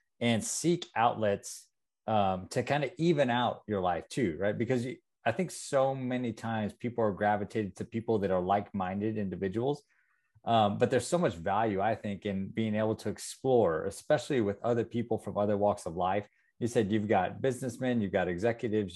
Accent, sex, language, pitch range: American, male, English, 100-120 Hz